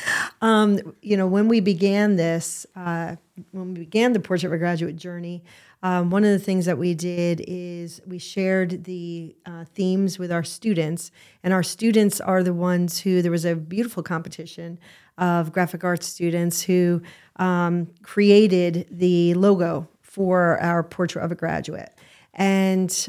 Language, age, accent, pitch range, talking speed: English, 40-59, American, 170-185 Hz, 160 wpm